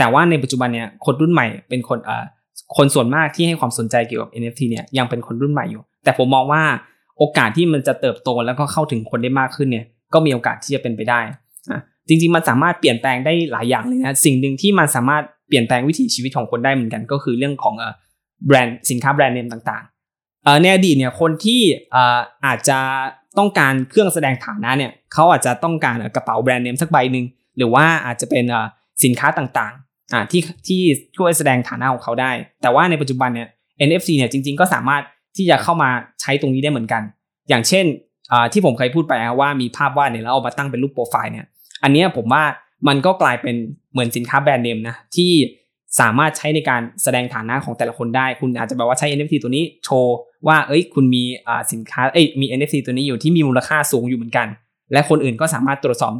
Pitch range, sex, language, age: 120-150 Hz, male, Thai, 20-39